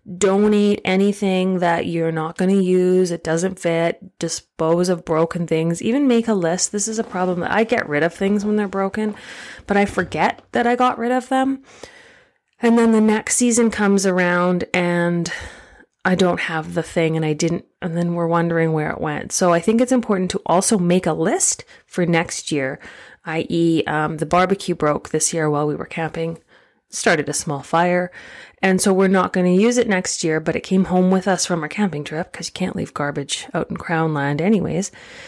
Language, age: English, 30-49